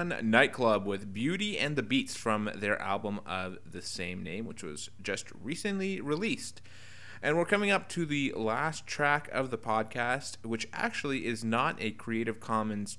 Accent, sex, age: American, male, 30-49